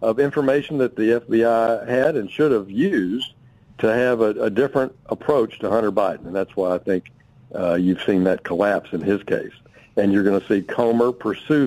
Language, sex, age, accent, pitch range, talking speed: English, male, 60-79, American, 105-135 Hz, 200 wpm